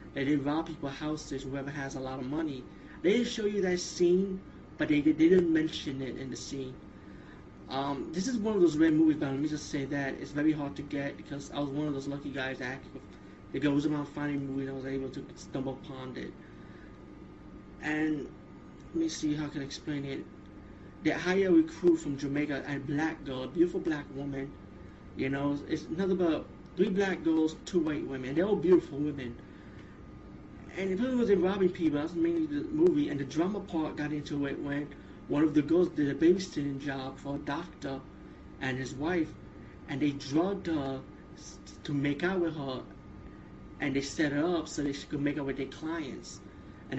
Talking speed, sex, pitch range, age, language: 205 wpm, male, 135-175 Hz, 30-49, English